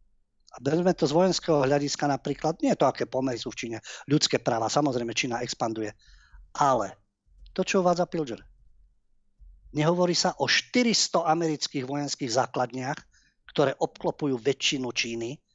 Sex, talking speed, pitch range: male, 135 wpm, 115-145 Hz